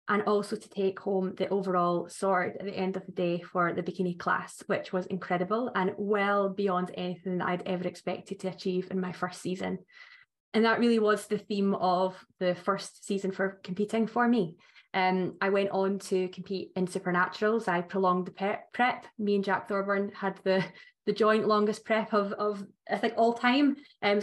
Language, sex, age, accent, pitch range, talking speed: English, female, 20-39, British, 180-205 Hz, 190 wpm